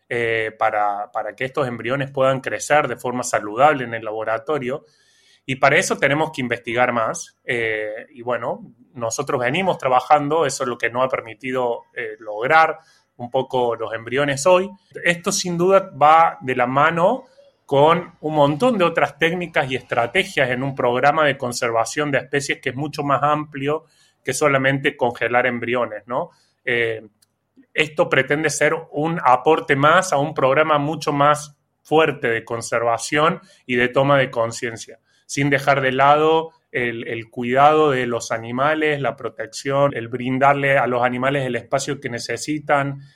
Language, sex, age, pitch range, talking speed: Spanish, male, 20-39, 120-150 Hz, 160 wpm